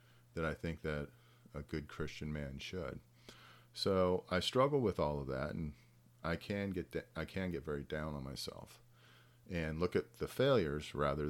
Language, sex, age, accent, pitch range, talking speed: English, male, 40-59, American, 75-110 Hz, 180 wpm